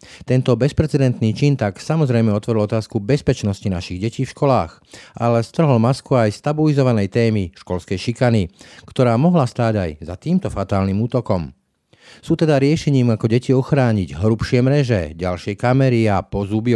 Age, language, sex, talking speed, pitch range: 40-59, Slovak, male, 145 wpm, 100-130 Hz